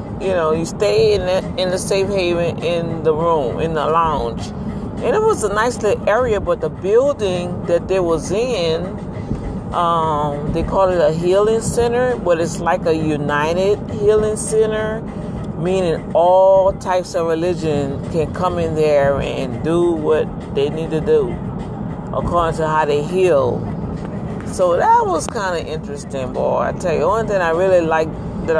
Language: English